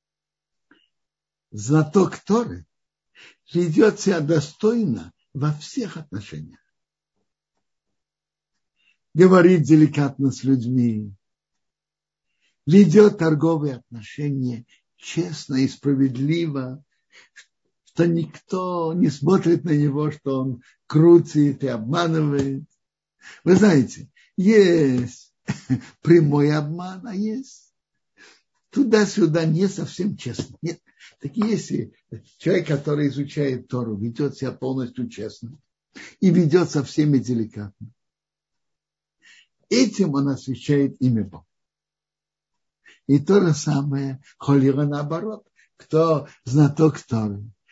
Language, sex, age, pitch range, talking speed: Russian, male, 60-79, 130-170 Hz, 90 wpm